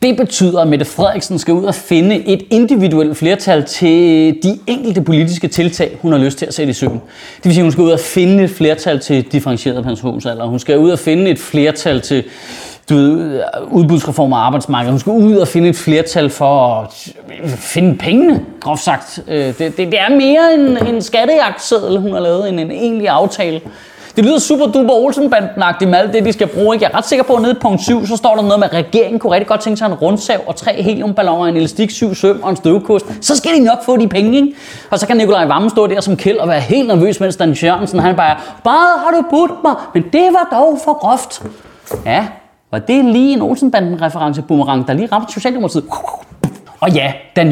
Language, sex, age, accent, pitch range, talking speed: Danish, male, 30-49, native, 155-225 Hz, 220 wpm